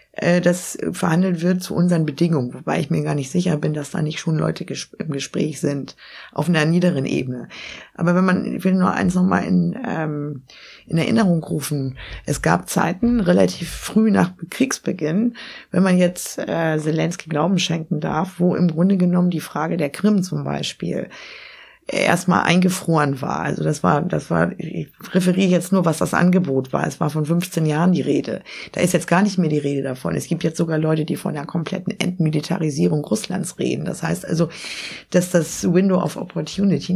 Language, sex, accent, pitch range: German, female, German, 155-185 Hz